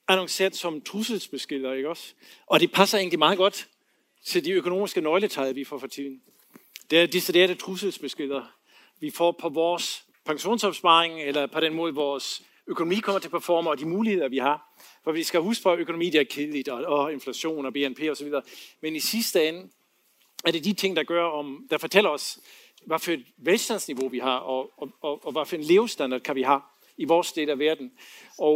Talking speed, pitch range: 200 wpm, 145-190 Hz